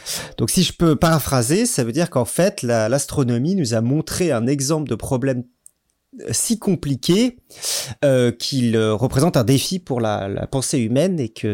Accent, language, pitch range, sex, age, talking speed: French, French, 115-145 Hz, male, 30-49, 170 wpm